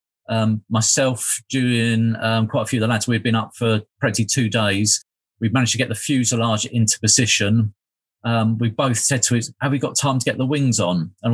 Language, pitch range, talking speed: English, 110-125 Hz, 215 wpm